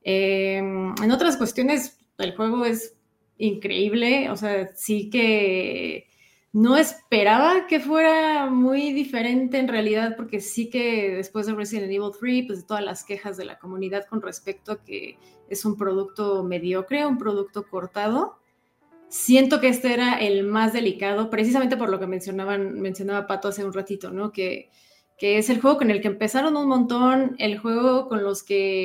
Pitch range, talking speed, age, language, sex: 195-240 Hz, 170 wpm, 20-39, Spanish, female